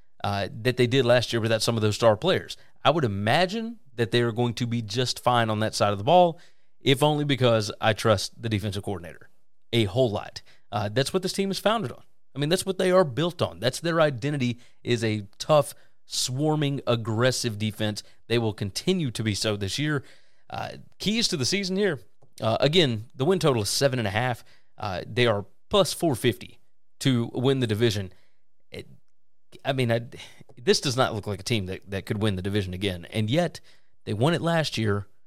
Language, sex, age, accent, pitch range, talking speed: English, male, 30-49, American, 110-150 Hz, 200 wpm